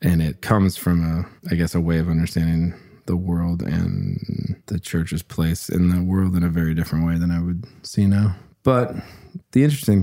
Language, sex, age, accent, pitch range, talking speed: English, male, 20-39, American, 85-95 Hz, 200 wpm